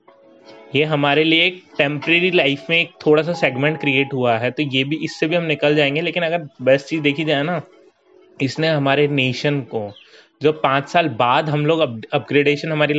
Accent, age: native, 20-39